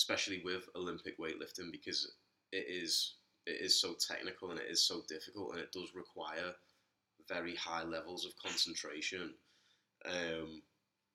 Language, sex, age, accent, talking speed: English, male, 20-39, British, 140 wpm